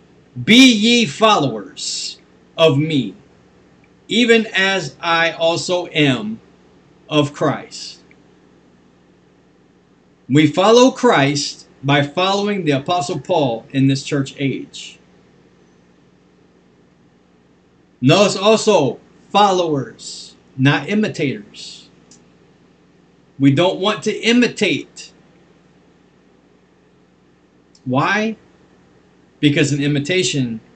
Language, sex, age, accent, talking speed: English, male, 40-59, American, 75 wpm